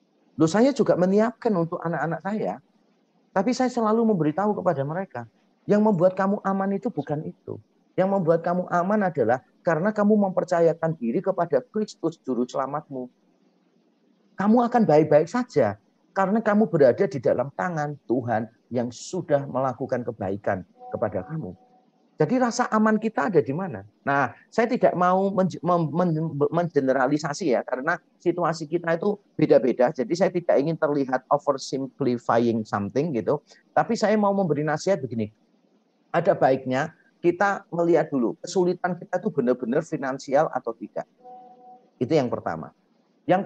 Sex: male